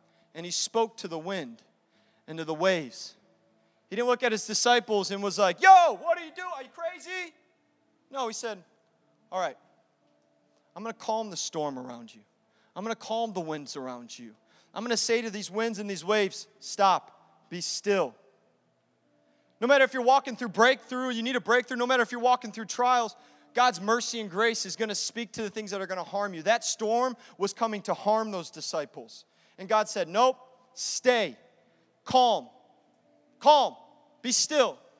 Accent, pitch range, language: American, 200-260 Hz, English